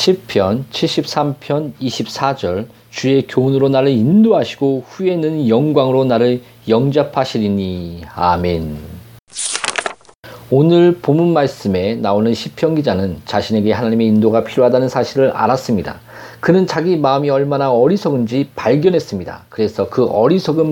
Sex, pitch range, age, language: male, 115-160 Hz, 40-59, Korean